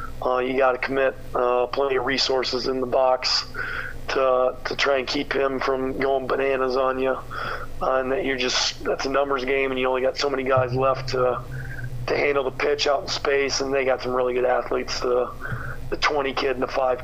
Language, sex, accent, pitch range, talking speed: English, male, American, 125-135 Hz, 220 wpm